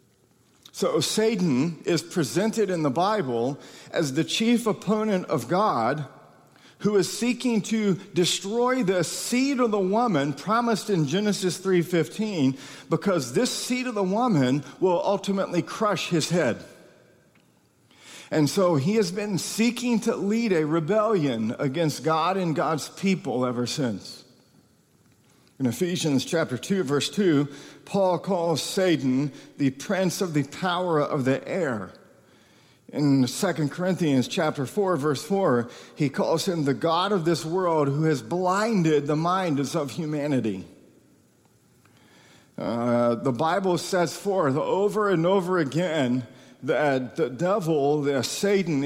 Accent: American